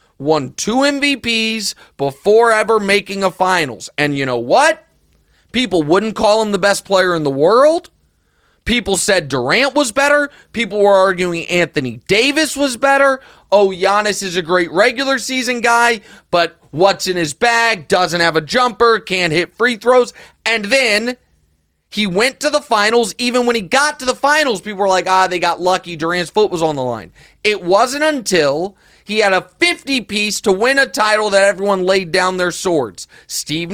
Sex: male